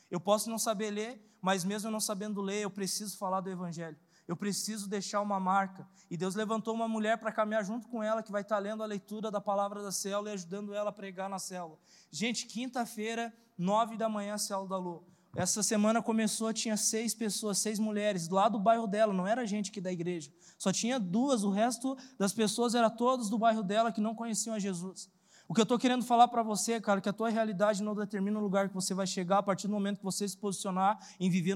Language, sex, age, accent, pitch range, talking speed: Portuguese, male, 20-39, Brazilian, 195-220 Hz, 235 wpm